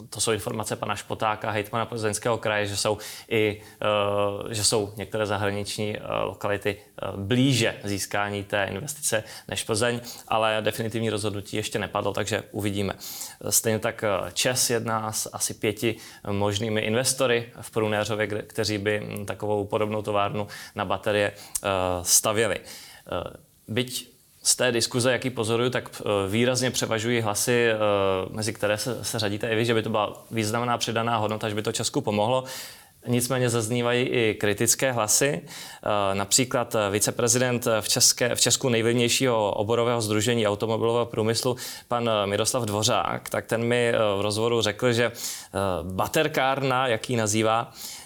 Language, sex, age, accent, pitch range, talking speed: Czech, male, 20-39, native, 105-120 Hz, 135 wpm